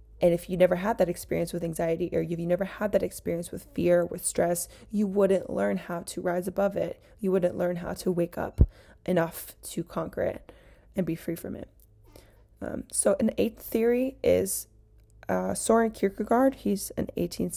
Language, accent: English, American